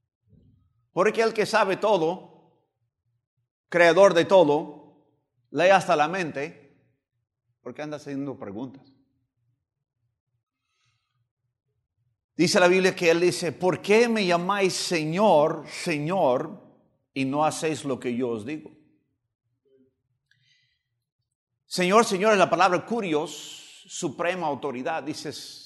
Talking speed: 105 wpm